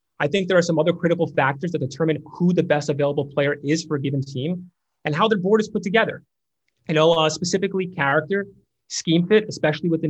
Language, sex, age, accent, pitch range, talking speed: English, male, 30-49, American, 150-185 Hz, 220 wpm